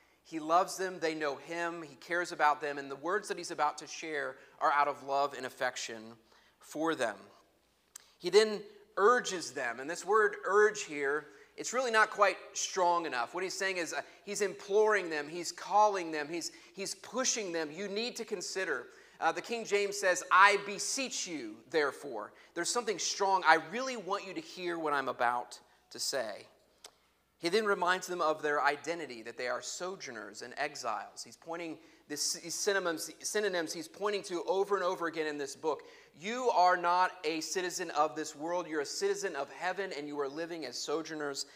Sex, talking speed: male, 185 wpm